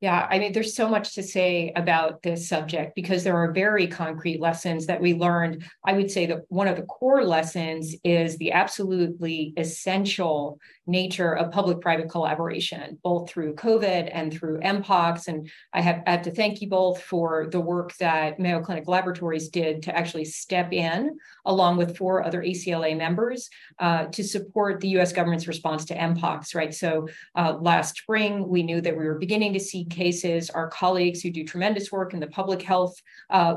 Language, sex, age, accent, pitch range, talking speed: English, female, 40-59, American, 165-190 Hz, 180 wpm